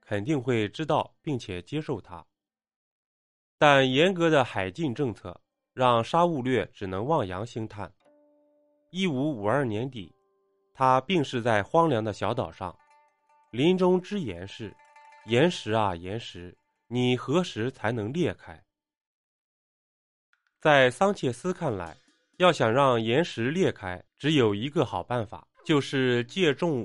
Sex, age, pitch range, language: male, 20-39, 105-175 Hz, Chinese